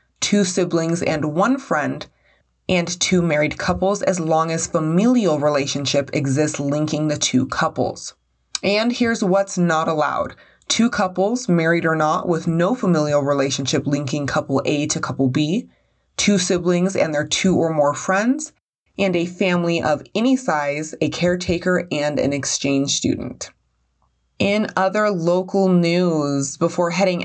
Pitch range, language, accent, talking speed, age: 150-185 Hz, English, American, 145 wpm, 20-39